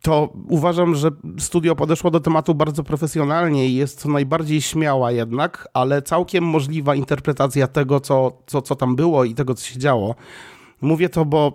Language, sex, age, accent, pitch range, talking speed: Polish, male, 40-59, native, 125-155 Hz, 170 wpm